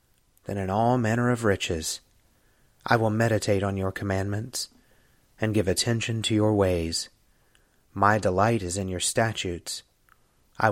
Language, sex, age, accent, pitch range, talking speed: English, male, 30-49, American, 100-120 Hz, 140 wpm